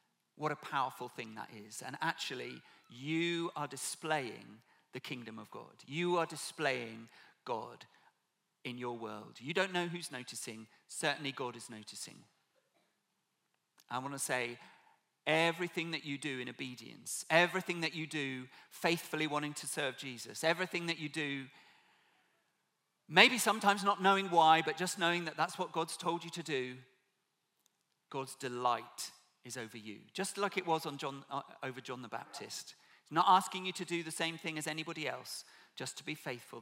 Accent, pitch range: British, 125-175 Hz